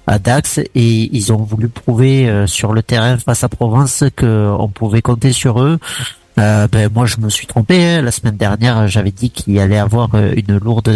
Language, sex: French, male